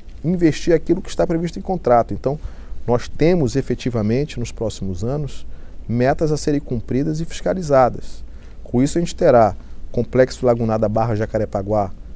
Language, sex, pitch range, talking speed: Portuguese, male, 105-130 Hz, 150 wpm